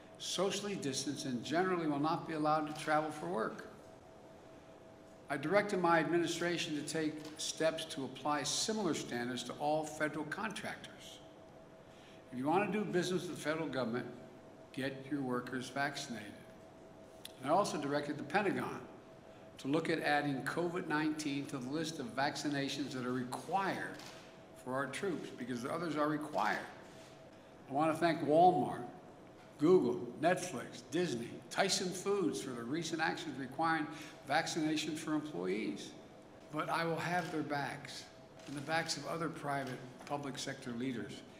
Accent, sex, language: American, male, English